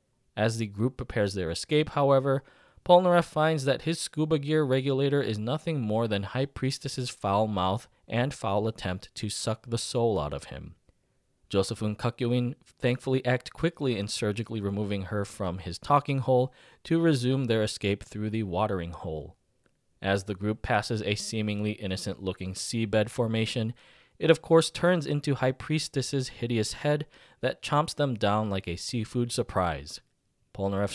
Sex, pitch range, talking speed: male, 100-135 Hz, 155 wpm